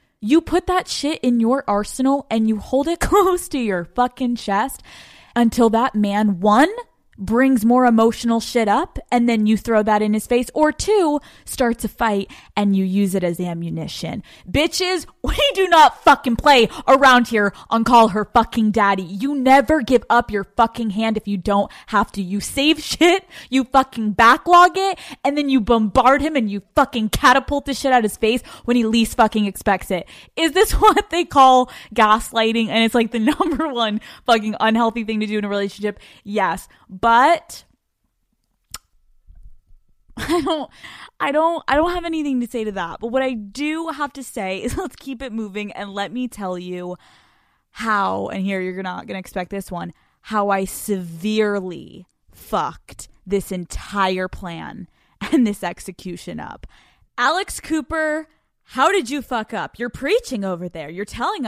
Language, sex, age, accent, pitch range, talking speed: English, female, 20-39, American, 205-280 Hz, 180 wpm